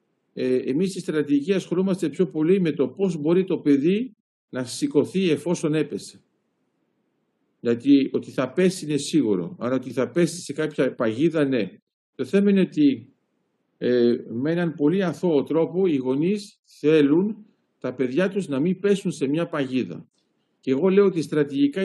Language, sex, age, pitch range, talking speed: Greek, male, 50-69, 140-190 Hz, 155 wpm